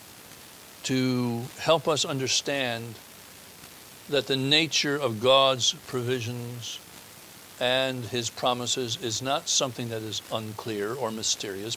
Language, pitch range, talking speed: English, 120-160 Hz, 105 wpm